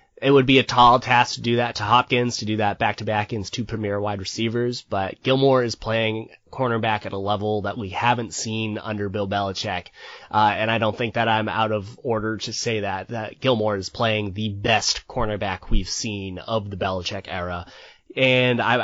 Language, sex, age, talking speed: English, male, 20-39, 205 wpm